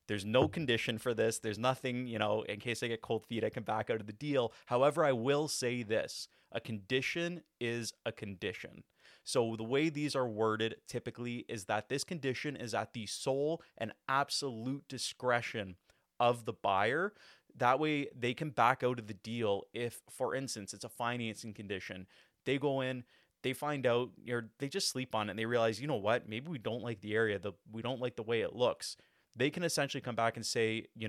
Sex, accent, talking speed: male, American, 210 wpm